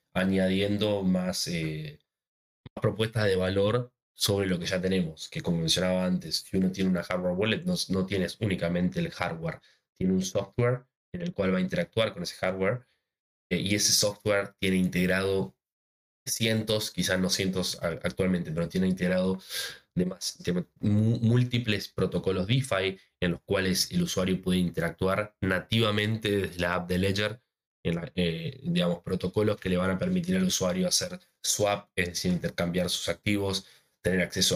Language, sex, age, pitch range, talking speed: Spanish, male, 20-39, 90-105 Hz, 165 wpm